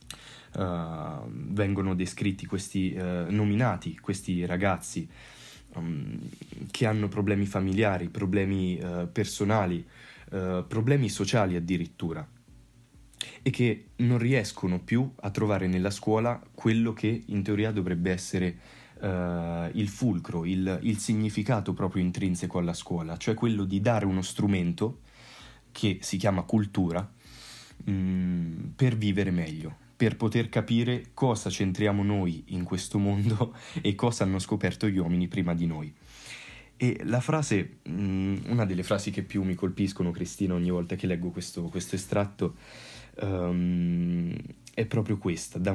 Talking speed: 120 wpm